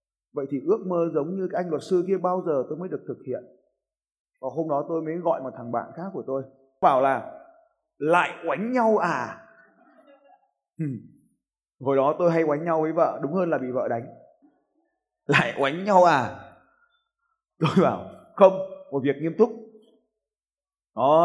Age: 20-39